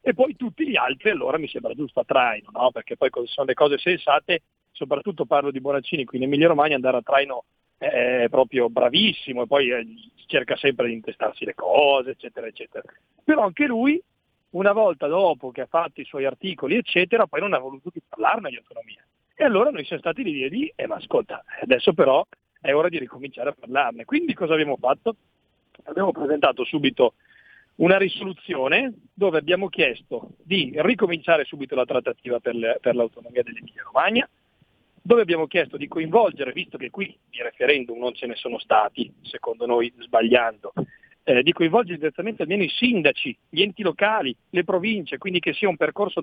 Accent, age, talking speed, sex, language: native, 40-59, 185 wpm, male, Italian